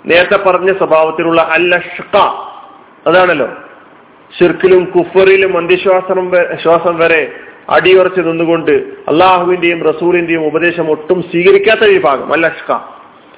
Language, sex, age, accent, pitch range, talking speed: Malayalam, male, 40-59, native, 170-230 Hz, 75 wpm